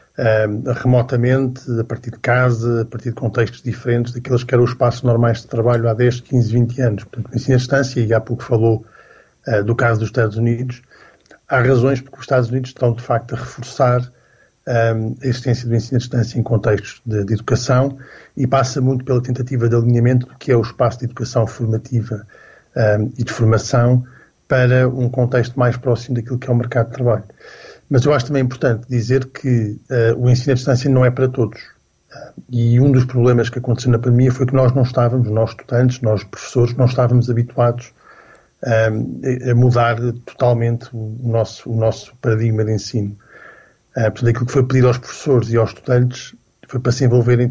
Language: Portuguese